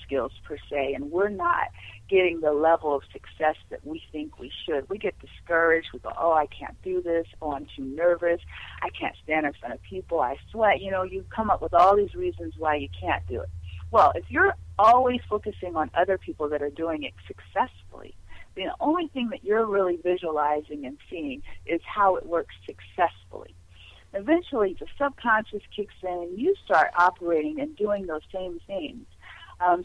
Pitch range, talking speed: 150-220 Hz, 190 wpm